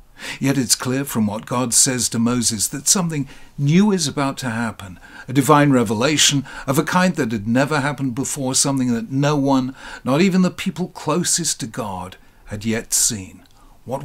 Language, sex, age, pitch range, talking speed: English, male, 60-79, 115-150 Hz, 180 wpm